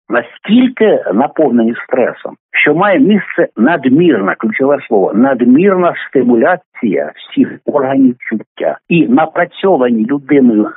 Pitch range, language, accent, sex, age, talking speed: 145-225 Hz, Ukrainian, native, male, 60-79, 95 wpm